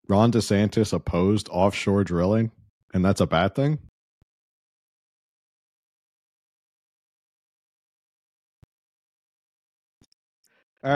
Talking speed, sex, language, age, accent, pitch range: 60 wpm, male, English, 40-59, American, 95-115 Hz